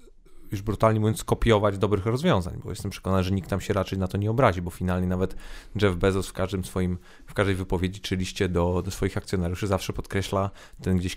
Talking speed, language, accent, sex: 205 wpm, Polish, native, male